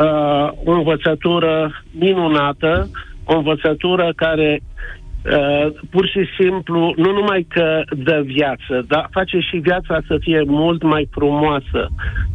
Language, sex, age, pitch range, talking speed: Romanian, male, 50-69, 150-185 Hz, 110 wpm